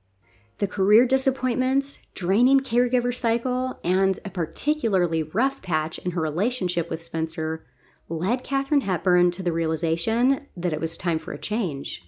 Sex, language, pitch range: female, English, 155-225 Hz